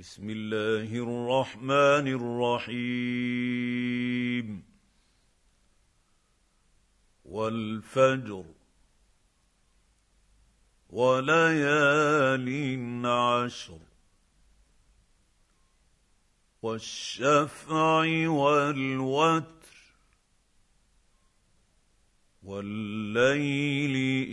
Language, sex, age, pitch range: English, male, 50-69, 105-165 Hz